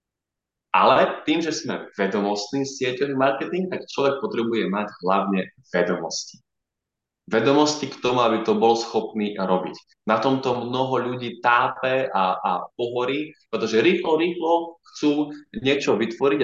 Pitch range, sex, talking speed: 115-160 Hz, male, 130 wpm